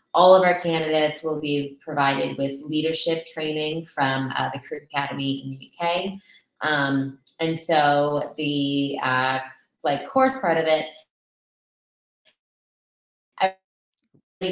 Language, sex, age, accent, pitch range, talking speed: English, female, 20-39, American, 140-165 Hz, 120 wpm